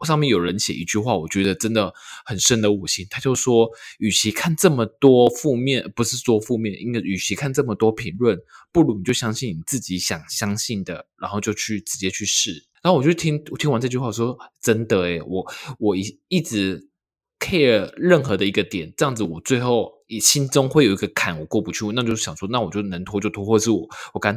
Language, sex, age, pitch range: Chinese, male, 20-39, 100-125 Hz